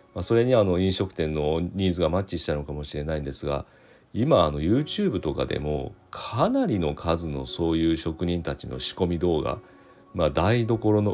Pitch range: 75-115 Hz